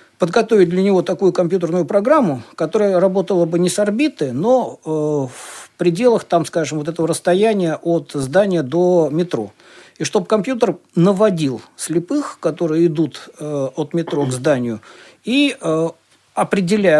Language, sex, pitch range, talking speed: Russian, male, 150-190 Hz, 140 wpm